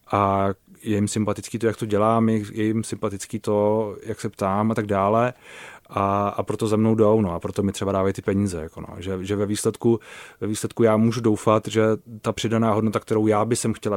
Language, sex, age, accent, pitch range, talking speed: Czech, male, 30-49, native, 105-115 Hz, 225 wpm